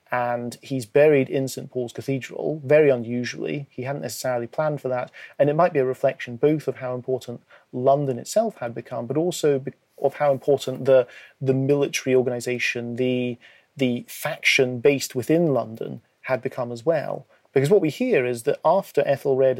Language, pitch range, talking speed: English, 125-140 Hz, 170 wpm